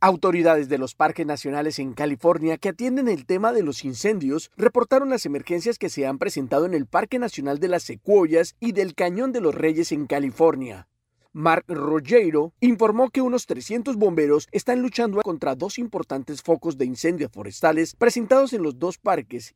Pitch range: 145-210 Hz